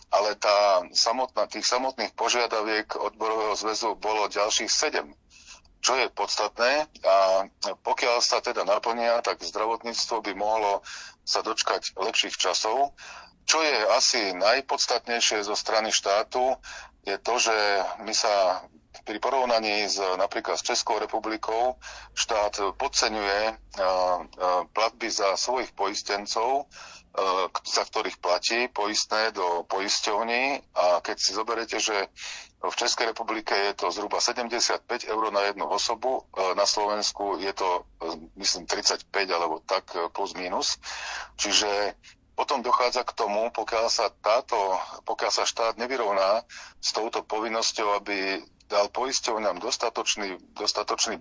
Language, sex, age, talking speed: Slovak, male, 40-59, 120 wpm